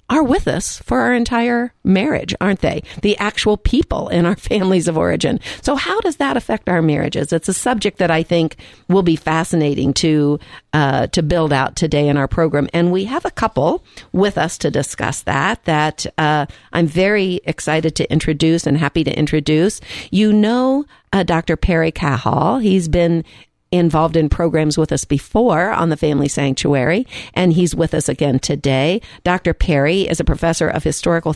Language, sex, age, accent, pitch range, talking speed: English, female, 50-69, American, 150-185 Hz, 180 wpm